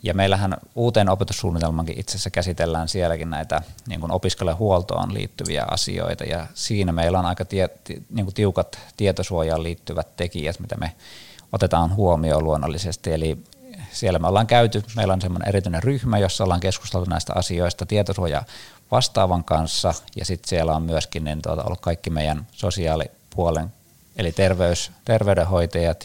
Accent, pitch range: native, 85-100 Hz